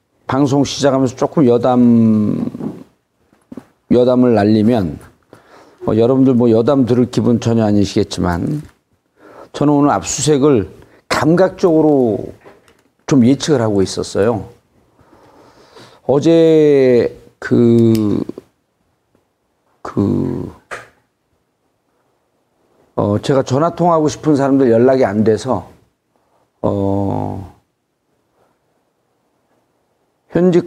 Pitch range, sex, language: 120-155 Hz, male, Korean